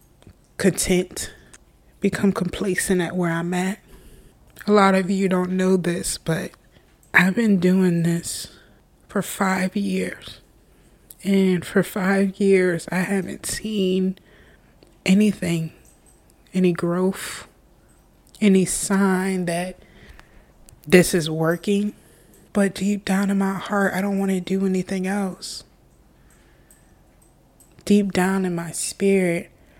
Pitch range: 175-195 Hz